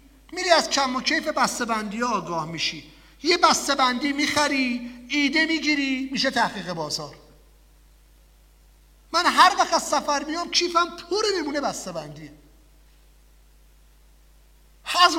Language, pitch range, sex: English, 195-315 Hz, male